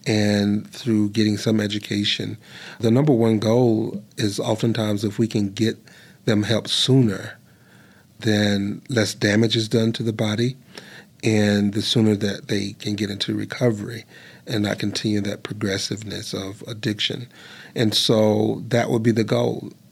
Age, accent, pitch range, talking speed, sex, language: 40-59, American, 105-115 Hz, 150 wpm, male, English